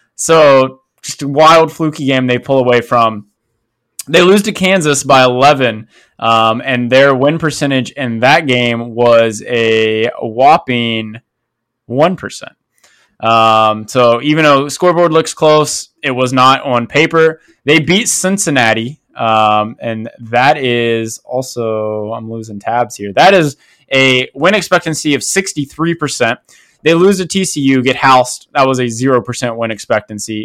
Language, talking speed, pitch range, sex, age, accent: English, 140 wpm, 115-150 Hz, male, 20-39, American